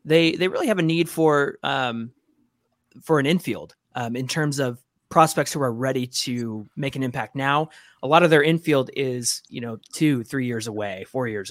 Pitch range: 130-160 Hz